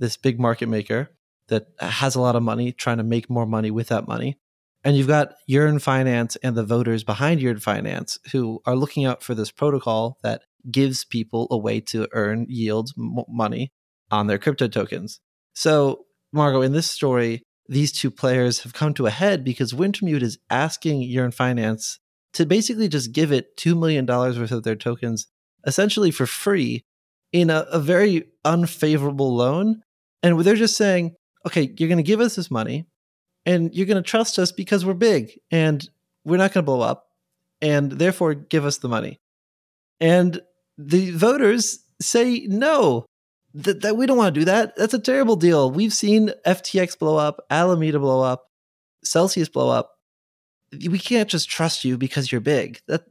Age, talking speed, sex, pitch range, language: 20-39, 180 wpm, male, 120-180 Hz, English